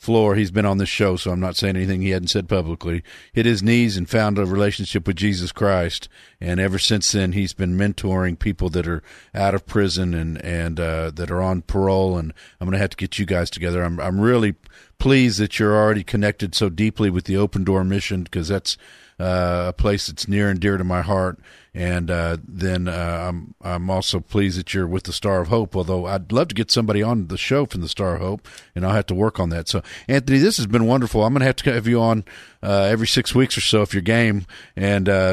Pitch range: 90-110 Hz